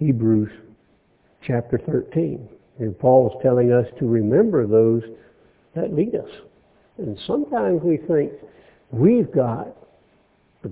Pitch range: 115-160 Hz